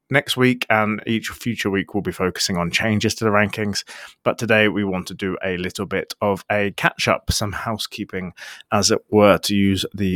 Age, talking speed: 30-49, 200 wpm